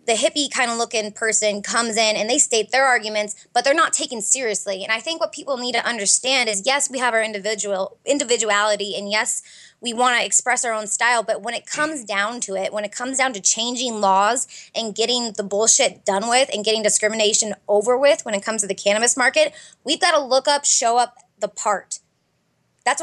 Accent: American